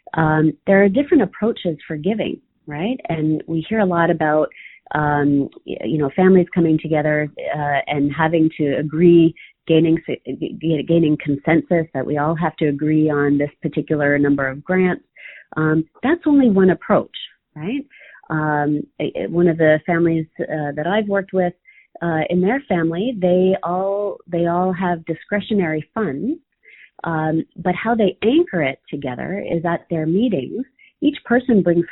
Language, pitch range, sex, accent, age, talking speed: English, 155-185 Hz, female, American, 30-49, 155 wpm